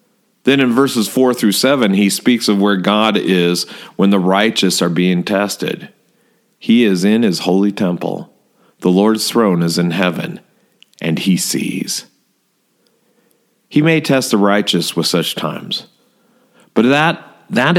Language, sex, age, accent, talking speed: English, male, 40-59, American, 145 wpm